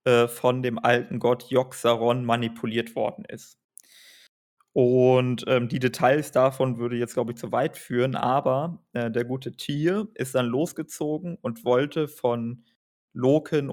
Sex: male